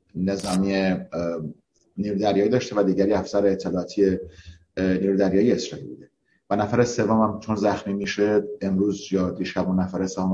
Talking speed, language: 140 wpm, Persian